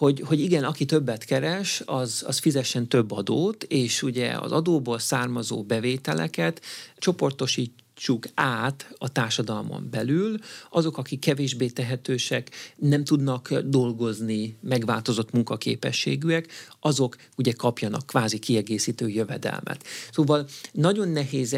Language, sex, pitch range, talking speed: Hungarian, male, 115-145 Hz, 110 wpm